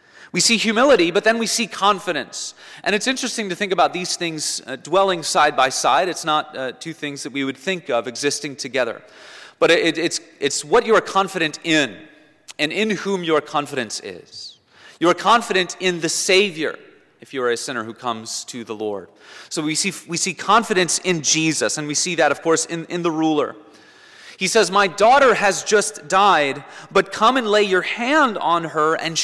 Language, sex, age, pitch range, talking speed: English, male, 30-49, 140-195 Hz, 195 wpm